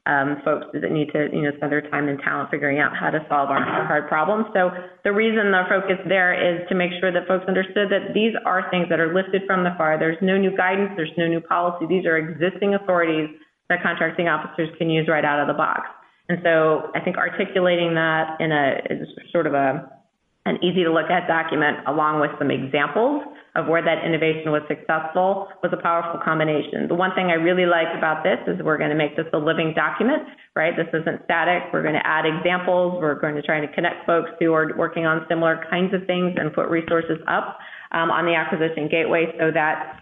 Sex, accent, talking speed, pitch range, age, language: female, American, 220 wpm, 155-180 Hz, 30-49, English